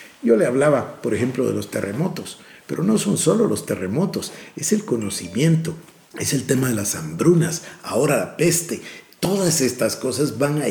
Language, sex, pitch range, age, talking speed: Spanish, male, 130-175 Hz, 50-69, 175 wpm